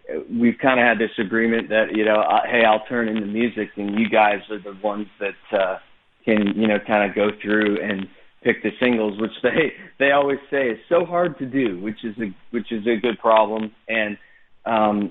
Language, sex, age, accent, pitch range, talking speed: English, male, 30-49, American, 105-115 Hz, 215 wpm